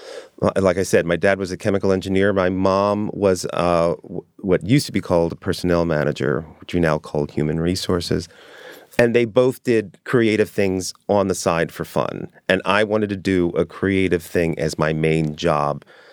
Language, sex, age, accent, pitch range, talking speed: English, male, 30-49, American, 85-110 Hz, 185 wpm